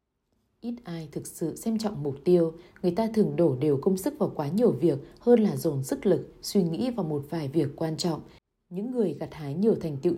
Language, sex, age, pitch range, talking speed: Vietnamese, female, 20-39, 160-215 Hz, 230 wpm